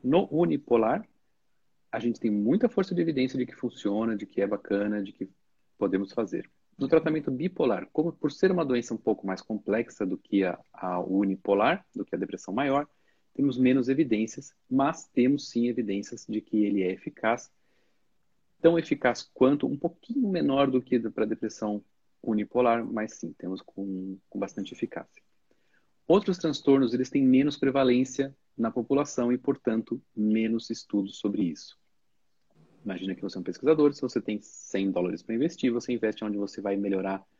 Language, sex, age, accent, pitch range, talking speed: English, male, 40-59, Brazilian, 100-135 Hz, 170 wpm